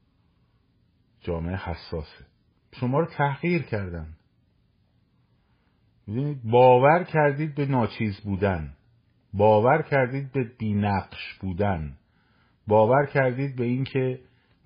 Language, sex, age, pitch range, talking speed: Persian, male, 50-69, 105-130 Hz, 80 wpm